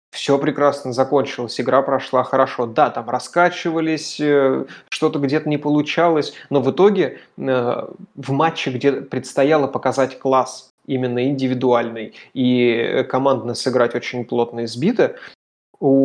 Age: 20-39